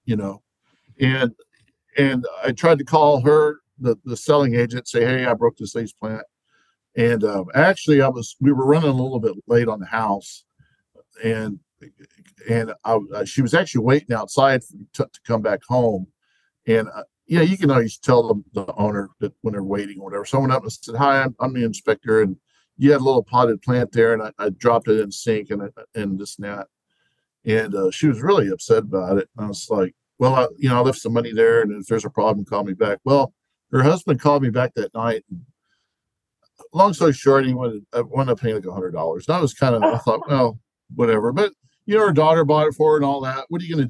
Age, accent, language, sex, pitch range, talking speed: 50-69, American, English, male, 115-150 Hz, 230 wpm